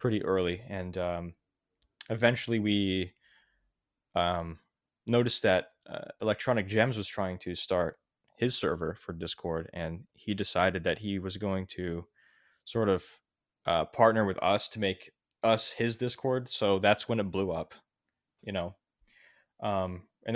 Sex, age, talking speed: male, 20-39, 145 wpm